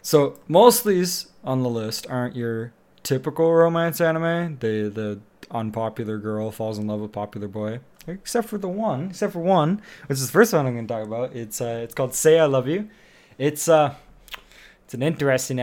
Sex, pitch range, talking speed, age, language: male, 110-150 Hz, 200 wpm, 20-39, English